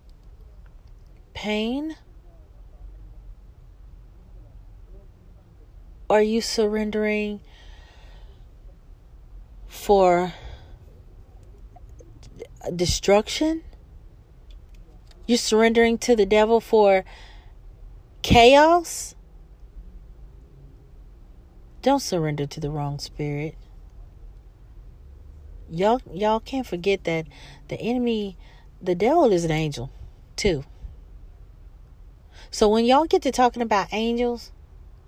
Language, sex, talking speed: English, female, 70 wpm